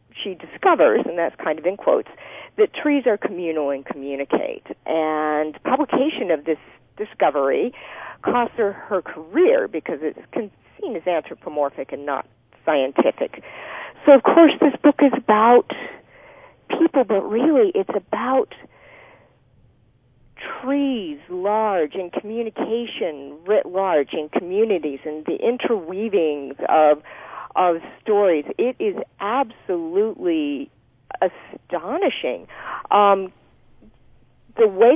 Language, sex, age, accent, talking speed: English, female, 50-69, American, 110 wpm